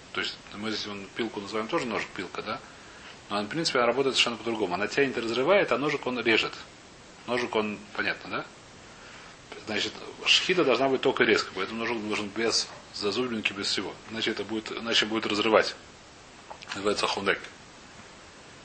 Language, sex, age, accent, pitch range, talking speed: Russian, male, 30-49, native, 110-155 Hz, 165 wpm